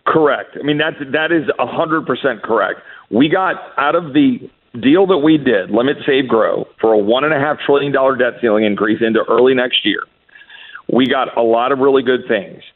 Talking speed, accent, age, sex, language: 180 wpm, American, 50-69, male, English